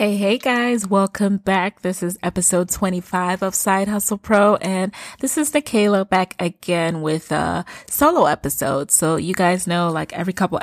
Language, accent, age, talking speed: English, American, 20-39, 170 wpm